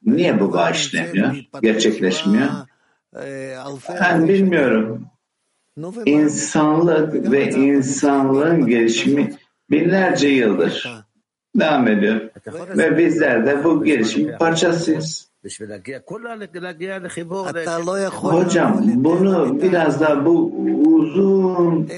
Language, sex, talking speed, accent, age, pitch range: Turkish, male, 70 wpm, native, 60-79, 135-175 Hz